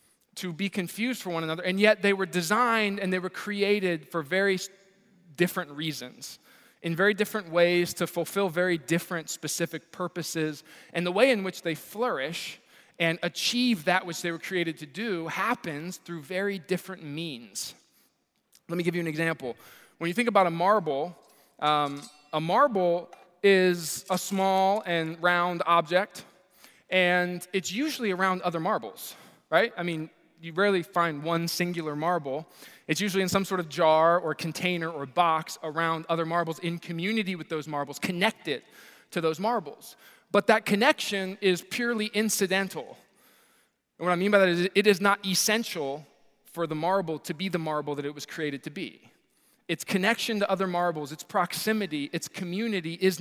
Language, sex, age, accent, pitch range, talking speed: English, male, 20-39, American, 165-200 Hz, 170 wpm